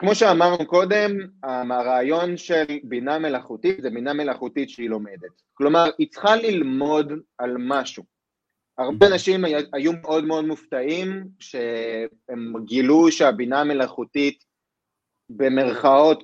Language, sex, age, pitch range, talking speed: Hebrew, male, 30-49, 125-165 Hz, 105 wpm